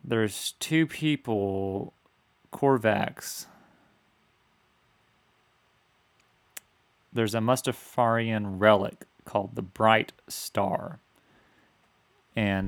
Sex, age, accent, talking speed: male, 30-49, American, 60 wpm